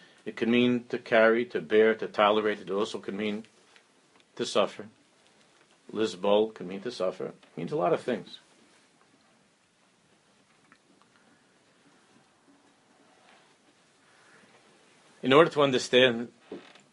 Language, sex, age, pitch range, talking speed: English, male, 50-69, 110-125 Hz, 105 wpm